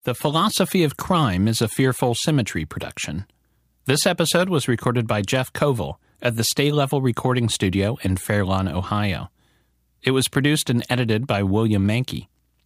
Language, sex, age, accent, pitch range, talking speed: English, male, 40-59, American, 95-135 Hz, 155 wpm